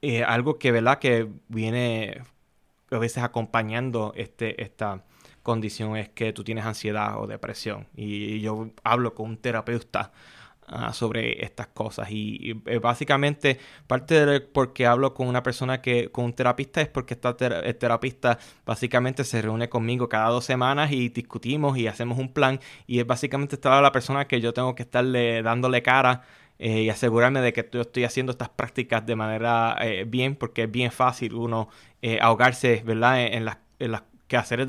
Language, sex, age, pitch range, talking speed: Spanish, male, 20-39, 115-130 Hz, 180 wpm